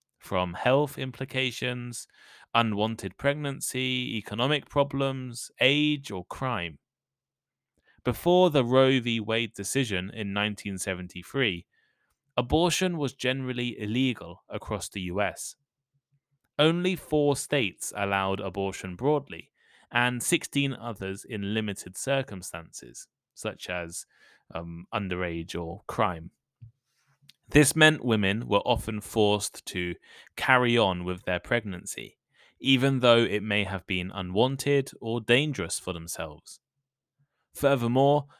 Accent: British